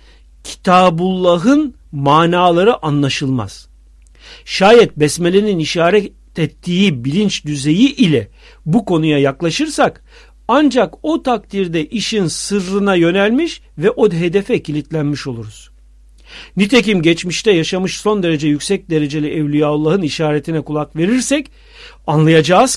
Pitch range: 155-235 Hz